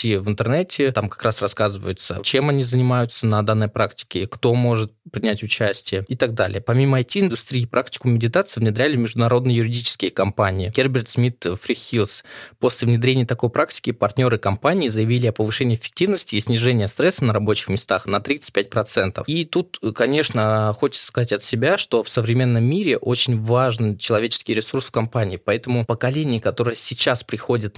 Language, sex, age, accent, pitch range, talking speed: Russian, male, 20-39, native, 110-130 Hz, 155 wpm